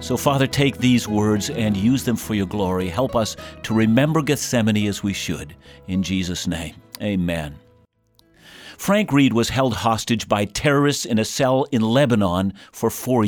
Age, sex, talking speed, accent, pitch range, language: 50-69, male, 165 wpm, American, 110-150 Hz, English